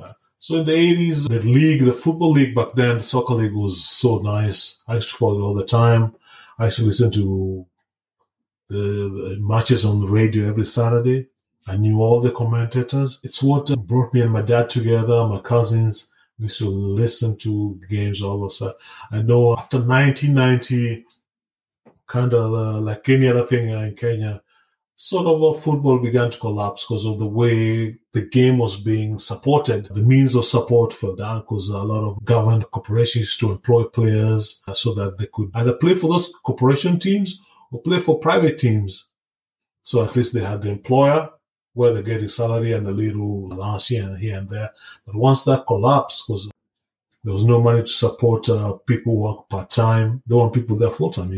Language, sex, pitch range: English, male, 105-125 Hz